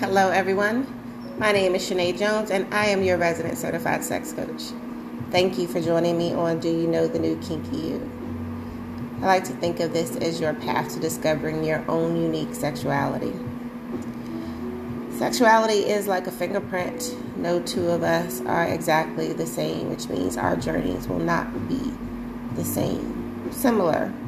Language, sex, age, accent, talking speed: English, female, 30-49, American, 165 wpm